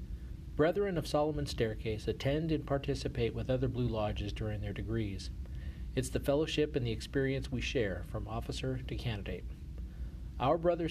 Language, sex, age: English, male, 40-59